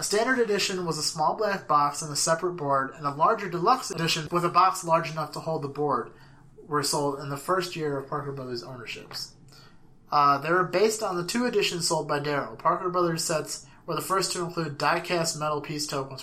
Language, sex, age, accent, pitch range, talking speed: English, male, 30-49, American, 140-175 Hz, 220 wpm